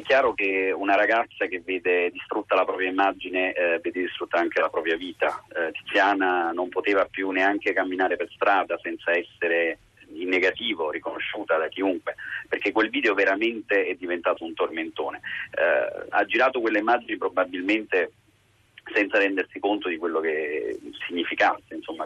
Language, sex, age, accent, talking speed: Italian, male, 30-49, native, 150 wpm